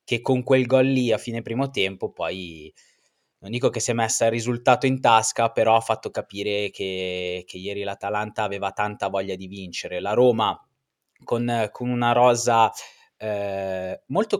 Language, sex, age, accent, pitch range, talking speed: Italian, male, 20-39, native, 95-115 Hz, 170 wpm